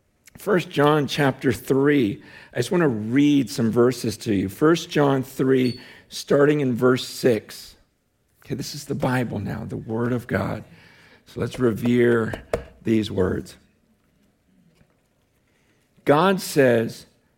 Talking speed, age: 125 wpm, 50-69